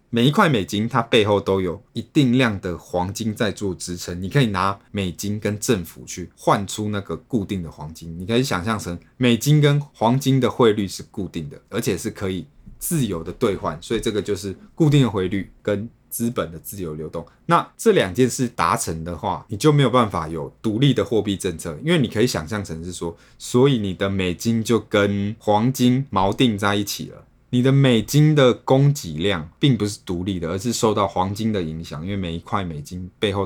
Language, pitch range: Chinese, 90-120 Hz